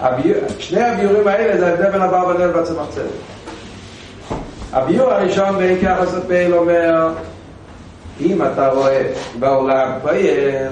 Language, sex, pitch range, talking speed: Hebrew, male, 135-210 Hz, 110 wpm